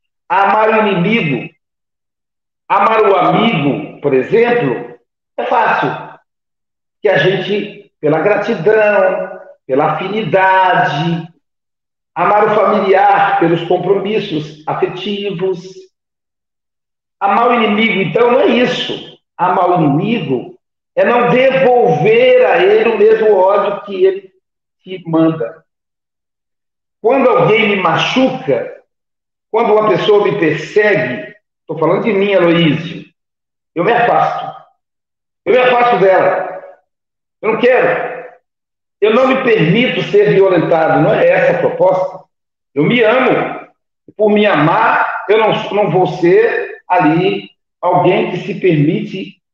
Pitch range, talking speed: 180-240 Hz, 115 wpm